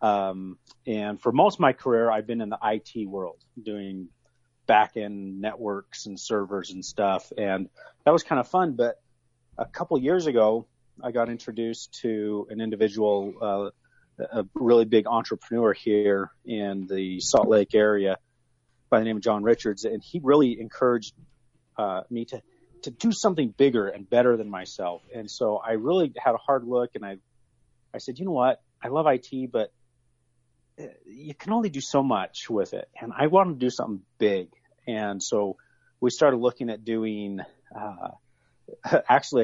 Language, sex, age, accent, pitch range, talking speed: English, male, 30-49, American, 105-125 Hz, 175 wpm